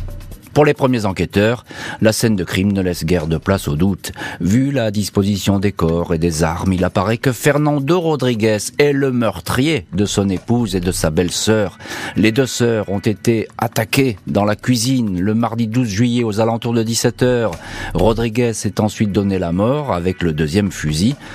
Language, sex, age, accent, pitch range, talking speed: French, male, 40-59, French, 95-125 Hz, 185 wpm